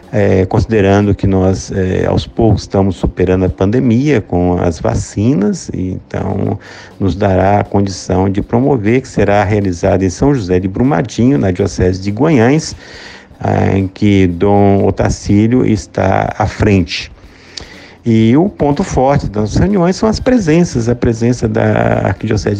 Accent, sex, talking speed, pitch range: Brazilian, male, 145 wpm, 95-120 Hz